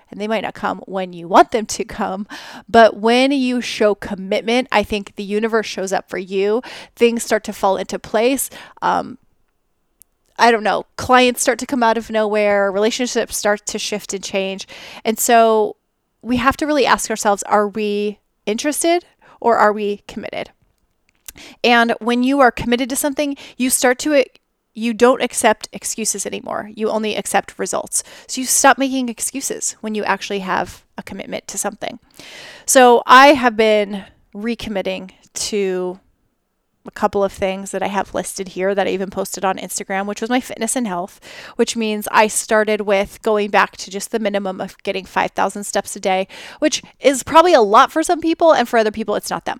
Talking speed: 185 wpm